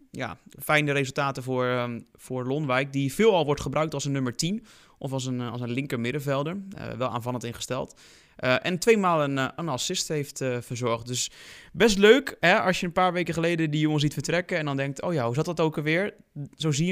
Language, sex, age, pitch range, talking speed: Dutch, male, 20-39, 125-155 Hz, 225 wpm